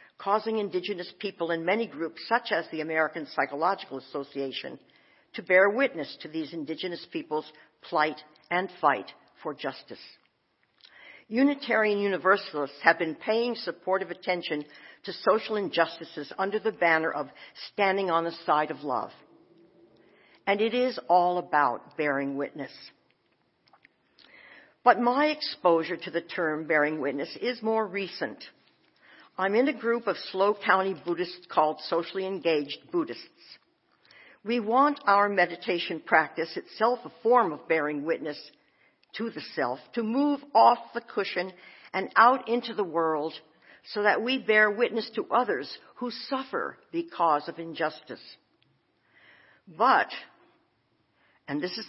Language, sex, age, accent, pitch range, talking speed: English, female, 60-79, American, 160-220 Hz, 130 wpm